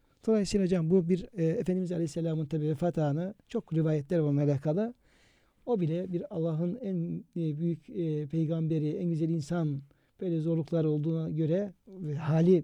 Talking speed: 150 wpm